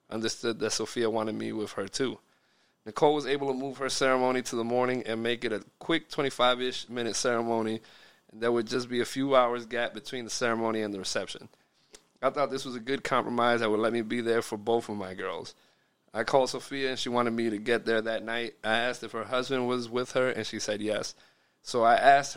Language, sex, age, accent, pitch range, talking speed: English, male, 20-39, American, 110-125 Hz, 230 wpm